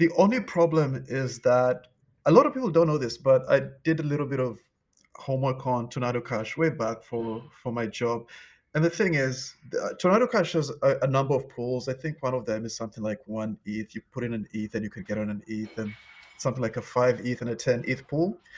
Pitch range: 120-150 Hz